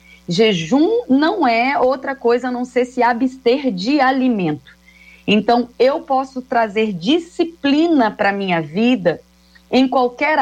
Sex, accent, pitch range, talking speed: female, Brazilian, 205-250 Hz, 125 wpm